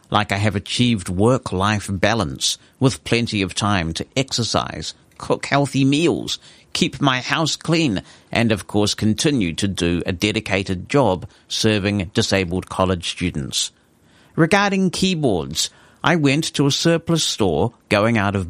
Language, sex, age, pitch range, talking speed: English, male, 60-79, 95-120 Hz, 140 wpm